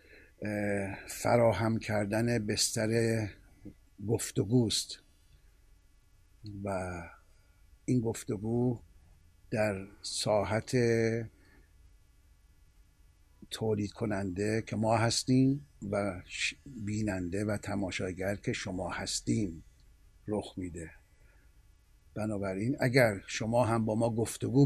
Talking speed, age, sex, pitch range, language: 75 wpm, 60-79, male, 95-120 Hz, Persian